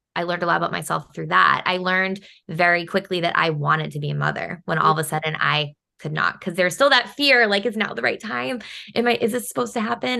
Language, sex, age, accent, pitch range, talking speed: English, female, 20-39, American, 170-205 Hz, 265 wpm